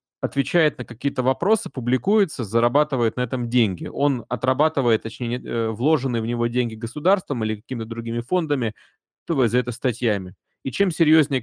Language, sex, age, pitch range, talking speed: Russian, male, 30-49, 110-140 Hz, 145 wpm